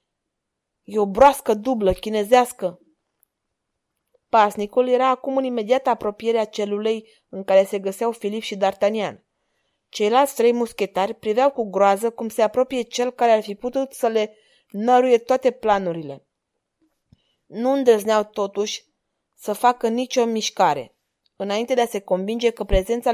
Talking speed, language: 135 wpm, Romanian